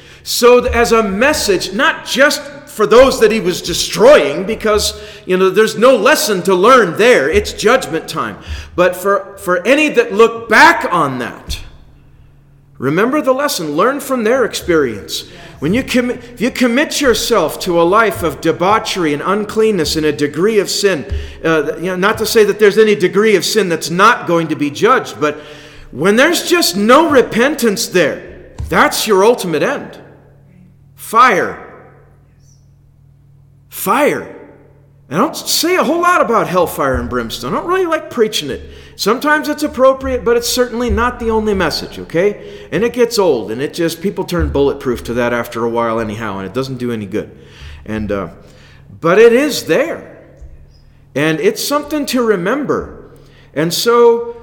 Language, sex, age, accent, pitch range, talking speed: English, male, 40-59, American, 145-240 Hz, 170 wpm